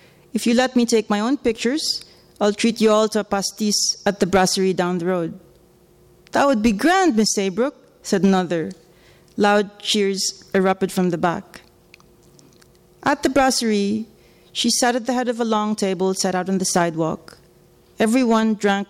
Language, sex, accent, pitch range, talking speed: English, female, Filipino, 185-220 Hz, 170 wpm